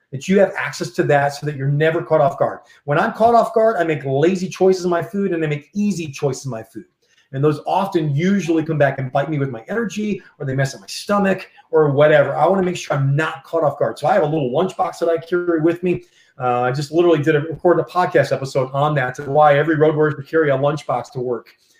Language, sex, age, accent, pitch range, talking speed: English, male, 30-49, American, 145-185 Hz, 265 wpm